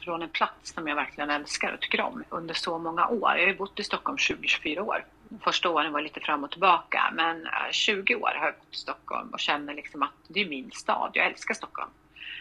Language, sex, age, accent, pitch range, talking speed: Swedish, female, 30-49, native, 155-190 Hz, 225 wpm